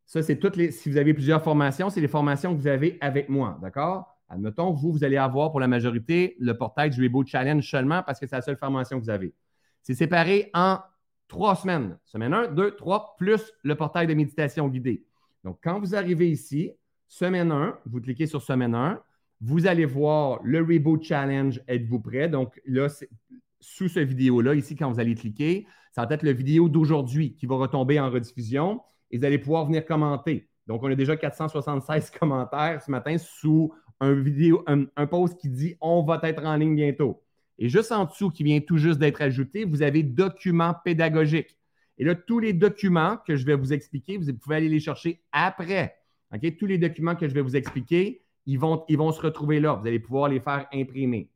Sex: male